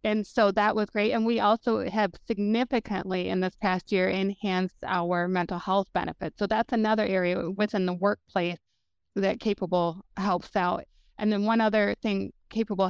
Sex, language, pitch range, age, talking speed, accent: female, English, 180-210 Hz, 20-39, 165 wpm, American